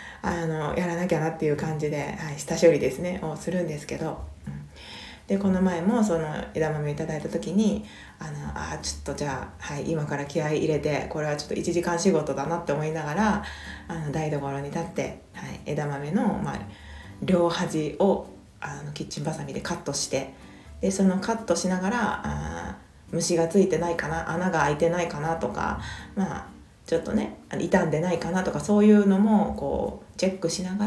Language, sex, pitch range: Japanese, female, 150-195 Hz